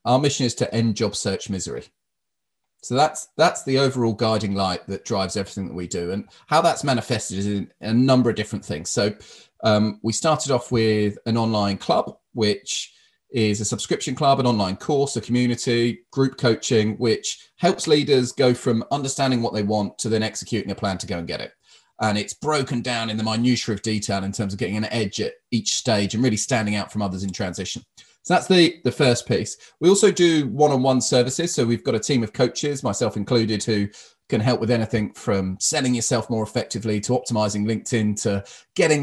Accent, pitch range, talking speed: British, 105-135 Hz, 205 wpm